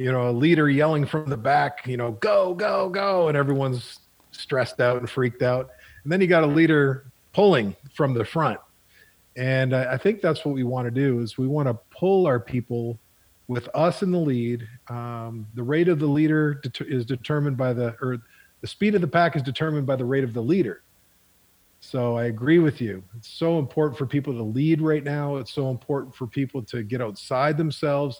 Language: English